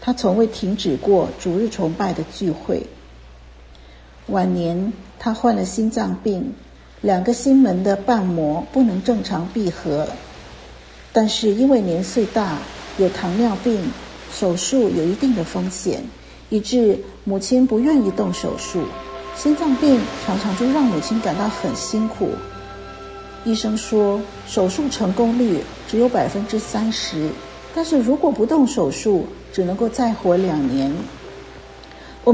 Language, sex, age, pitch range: Chinese, female, 50-69, 180-245 Hz